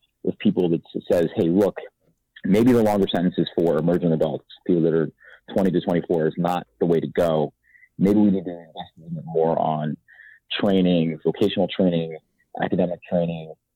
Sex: male